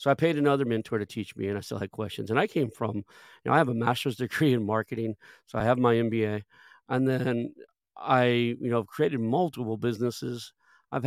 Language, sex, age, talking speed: English, male, 40-59, 215 wpm